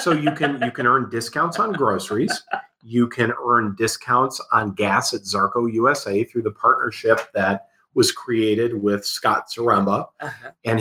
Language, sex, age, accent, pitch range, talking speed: English, male, 40-59, American, 95-125 Hz, 155 wpm